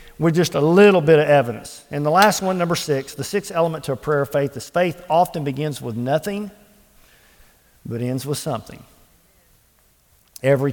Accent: American